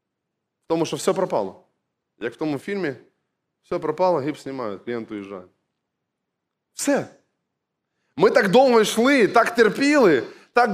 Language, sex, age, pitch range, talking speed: Ukrainian, male, 20-39, 175-235 Hz, 125 wpm